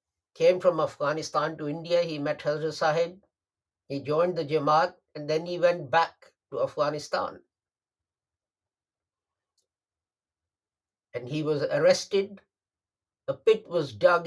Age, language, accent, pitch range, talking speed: 50-69, English, Indian, 95-160 Hz, 120 wpm